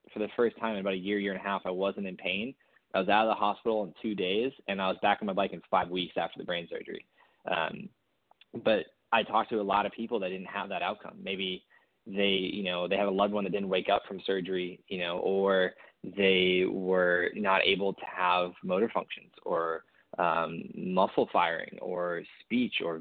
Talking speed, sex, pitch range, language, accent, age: 225 wpm, male, 90-100 Hz, English, American, 20-39